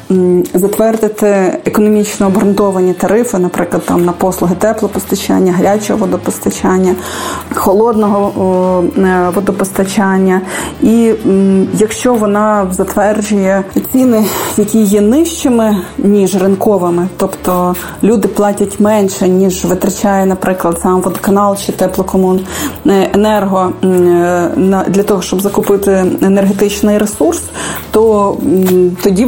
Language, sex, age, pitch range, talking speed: Ukrainian, female, 30-49, 190-215 Hz, 85 wpm